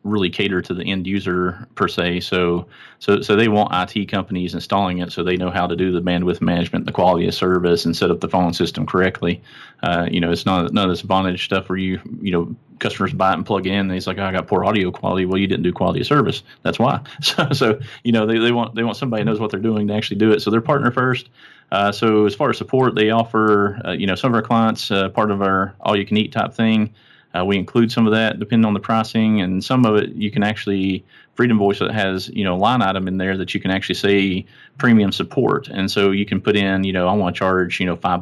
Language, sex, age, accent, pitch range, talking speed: English, male, 30-49, American, 95-110 Hz, 270 wpm